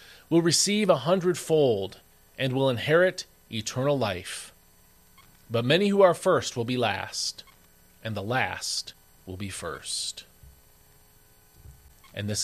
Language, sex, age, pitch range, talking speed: English, male, 40-59, 95-155 Hz, 120 wpm